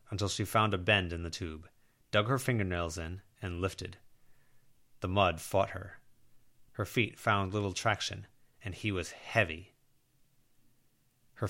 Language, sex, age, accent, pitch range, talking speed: English, male, 30-49, American, 95-130 Hz, 145 wpm